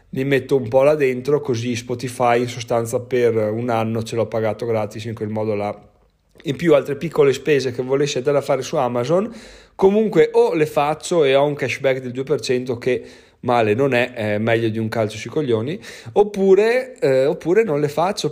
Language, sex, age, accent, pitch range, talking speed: Italian, male, 20-39, native, 115-145 Hz, 195 wpm